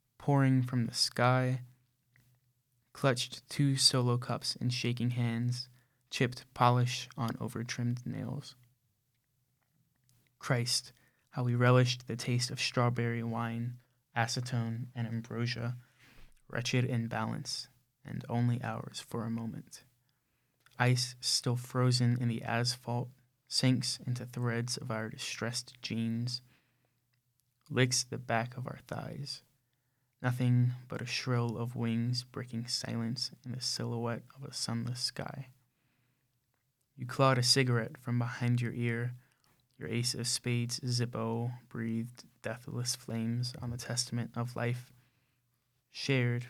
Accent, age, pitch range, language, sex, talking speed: American, 20-39, 120-130 Hz, English, male, 120 wpm